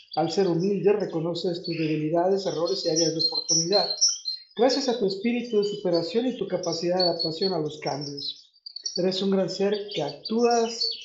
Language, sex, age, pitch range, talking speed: Spanish, male, 50-69, 165-205 Hz, 170 wpm